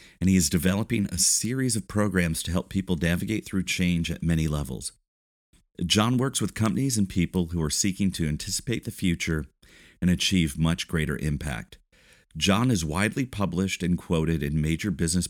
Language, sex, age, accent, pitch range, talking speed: English, male, 40-59, American, 80-105 Hz, 175 wpm